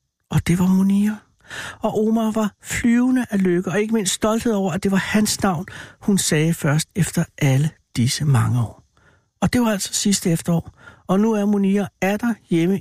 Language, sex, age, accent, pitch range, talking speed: Danish, male, 60-79, native, 140-190 Hz, 185 wpm